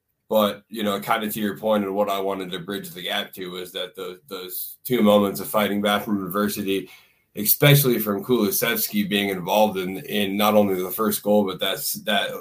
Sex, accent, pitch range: male, American, 105-125 Hz